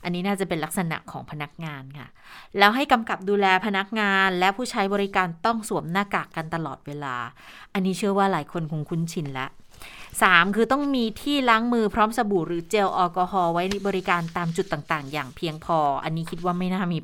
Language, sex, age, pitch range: Thai, female, 20-39, 170-210 Hz